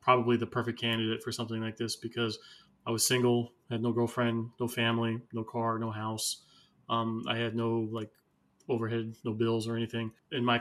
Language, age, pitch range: English, 20-39, 115-125 Hz